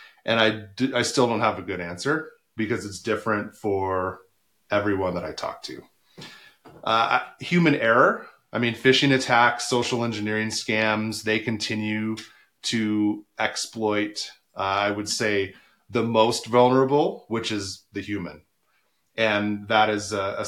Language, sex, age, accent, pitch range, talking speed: English, male, 30-49, American, 105-120 Hz, 140 wpm